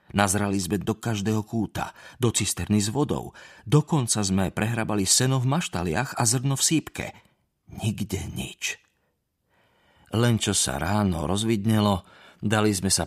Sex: male